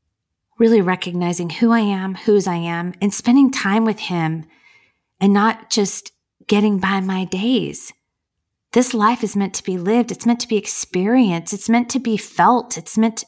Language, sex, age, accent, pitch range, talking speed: English, female, 30-49, American, 180-235 Hz, 175 wpm